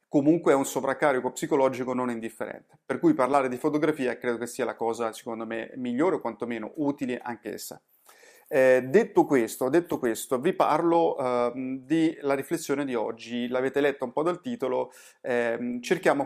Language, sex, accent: Italian, male, native